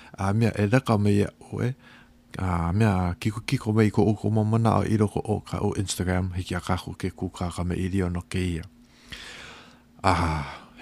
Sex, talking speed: male, 190 wpm